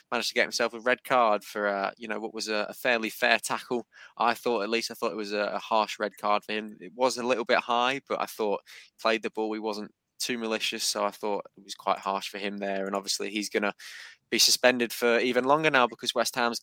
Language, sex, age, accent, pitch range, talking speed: English, male, 20-39, British, 105-115 Hz, 265 wpm